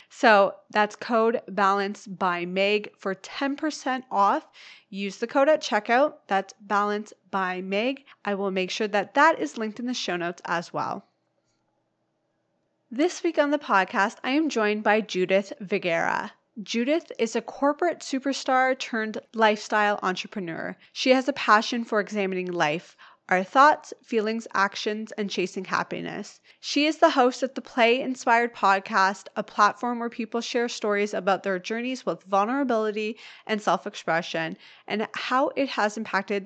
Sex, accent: female, American